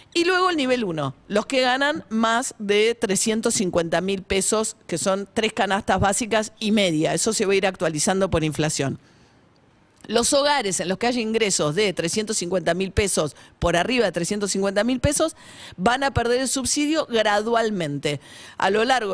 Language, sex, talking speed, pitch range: Spanish, female, 170 wpm, 175-235 Hz